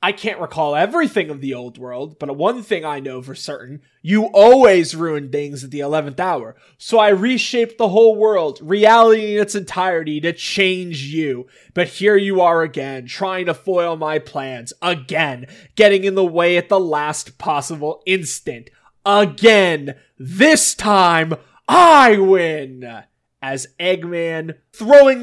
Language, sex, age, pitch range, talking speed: English, male, 20-39, 135-200 Hz, 150 wpm